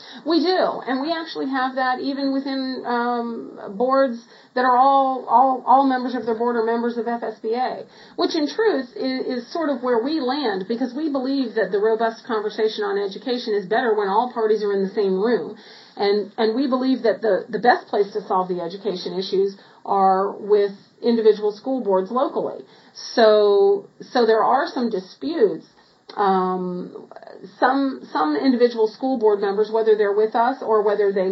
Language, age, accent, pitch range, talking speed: English, 40-59, American, 200-255 Hz, 180 wpm